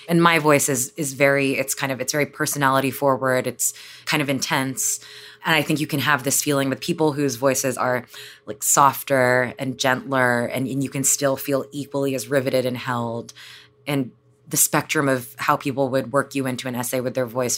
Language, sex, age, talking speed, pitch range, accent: English, female, 20-39, 205 wpm, 130-150 Hz, American